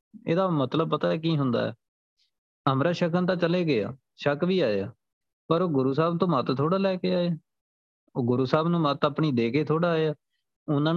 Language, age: Punjabi, 20-39